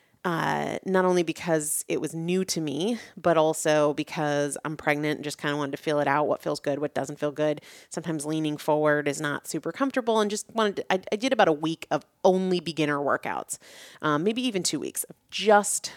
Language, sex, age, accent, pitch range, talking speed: English, female, 30-49, American, 155-190 Hz, 220 wpm